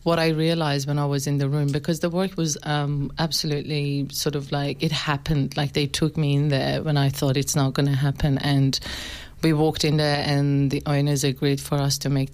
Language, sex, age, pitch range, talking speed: English, female, 30-49, 140-150 Hz, 230 wpm